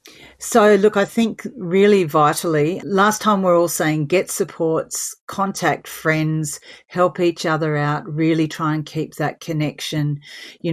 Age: 40-59